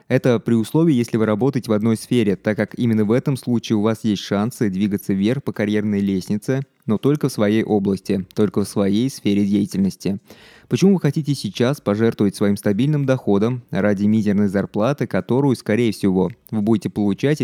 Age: 20-39